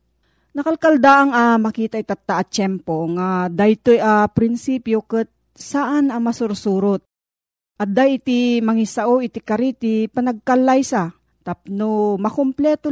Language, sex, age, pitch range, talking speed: Filipino, female, 40-59, 200-255 Hz, 120 wpm